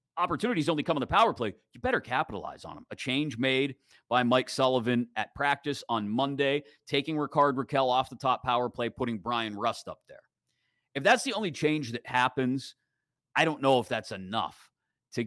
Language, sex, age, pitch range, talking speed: English, male, 30-49, 115-150 Hz, 195 wpm